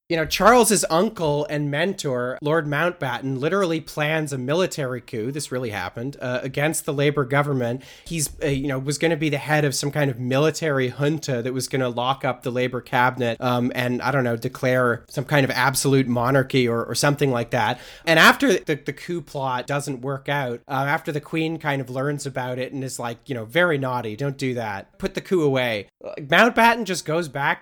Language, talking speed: English, 215 wpm